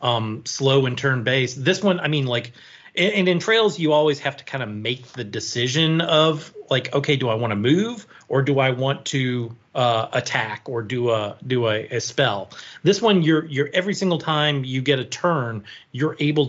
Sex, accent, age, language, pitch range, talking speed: male, American, 30-49, English, 120-140 Hz, 205 wpm